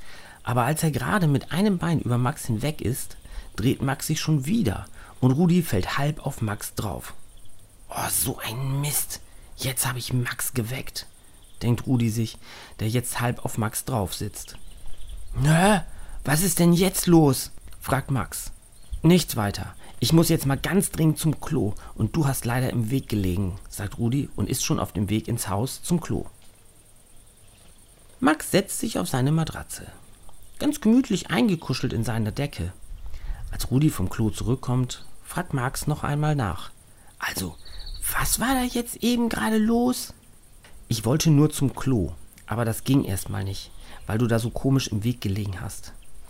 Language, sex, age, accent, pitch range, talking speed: German, male, 40-59, German, 100-140 Hz, 165 wpm